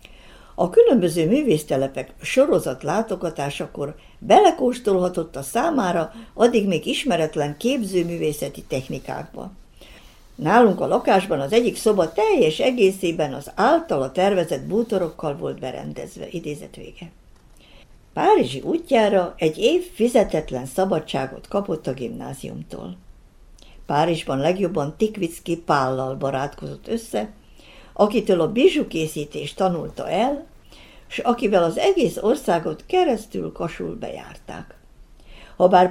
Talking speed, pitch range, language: 95 wpm, 150-230 Hz, Hungarian